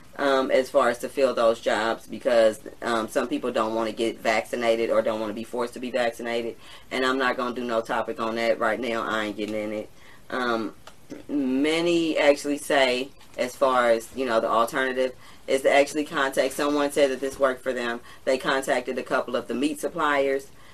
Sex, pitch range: female, 115-135 Hz